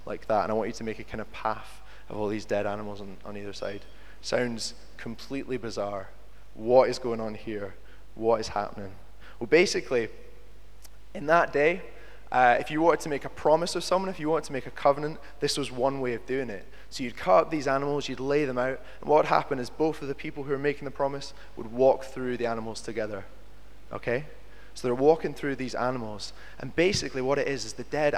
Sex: male